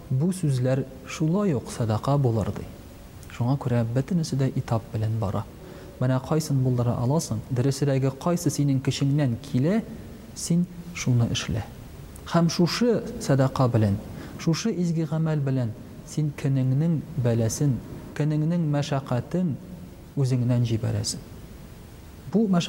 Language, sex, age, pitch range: Russian, male, 40-59, 125-155 Hz